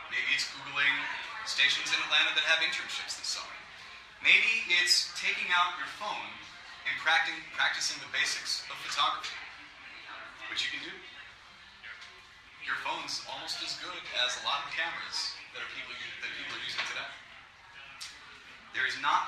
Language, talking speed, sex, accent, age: English, 145 wpm, male, American, 30-49